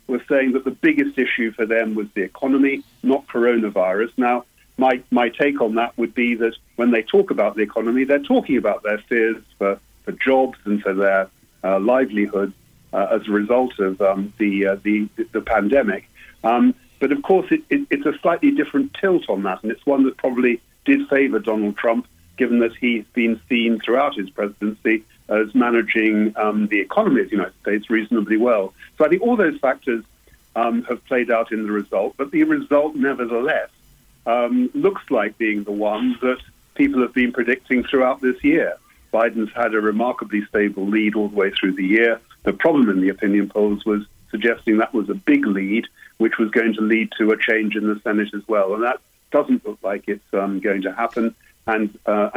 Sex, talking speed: male, 200 wpm